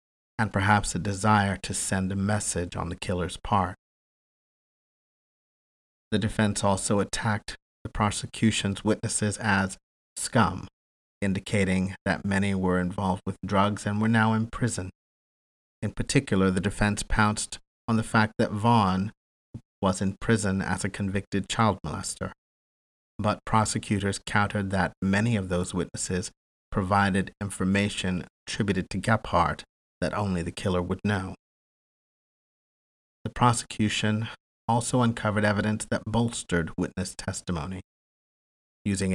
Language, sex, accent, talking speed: English, male, American, 125 wpm